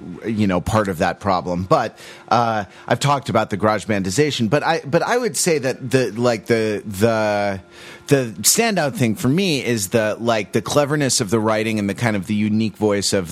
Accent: American